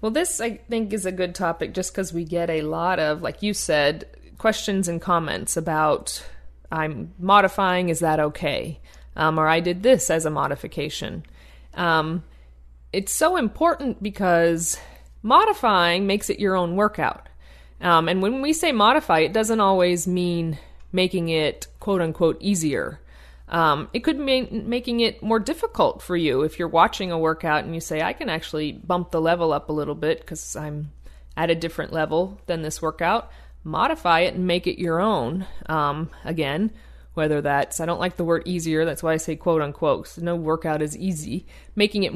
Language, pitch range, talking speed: English, 155-195 Hz, 180 wpm